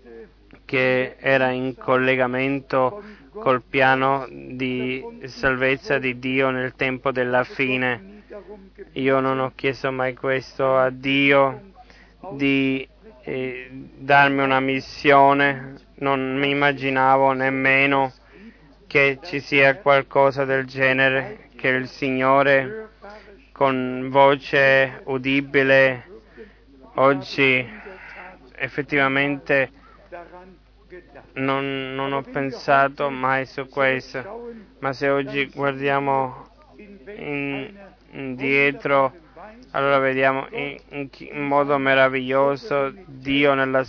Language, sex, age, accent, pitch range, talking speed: Italian, male, 20-39, native, 130-140 Hz, 90 wpm